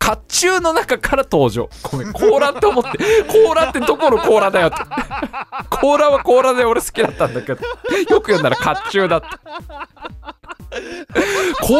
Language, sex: Japanese, male